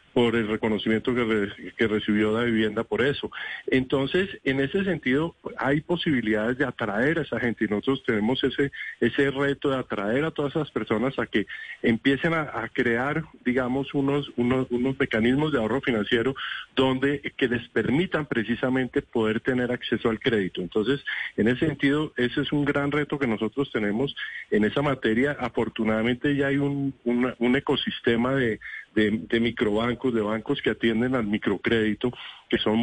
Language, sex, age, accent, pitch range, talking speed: Spanish, male, 40-59, Colombian, 115-145 Hz, 170 wpm